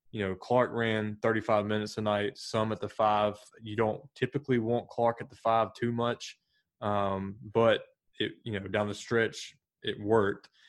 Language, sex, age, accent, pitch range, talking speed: English, male, 20-39, American, 100-115 Hz, 180 wpm